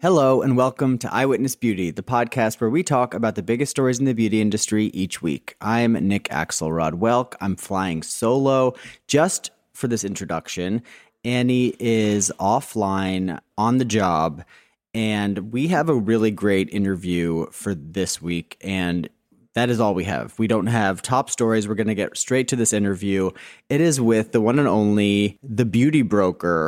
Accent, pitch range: American, 105-130 Hz